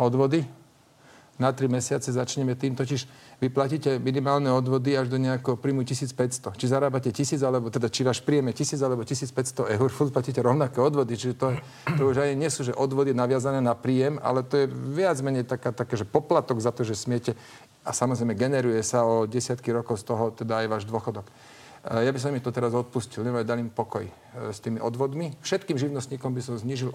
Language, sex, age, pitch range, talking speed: Slovak, male, 40-59, 125-140 Hz, 195 wpm